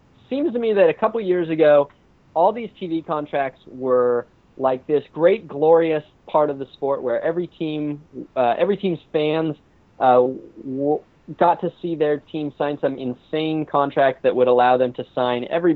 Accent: American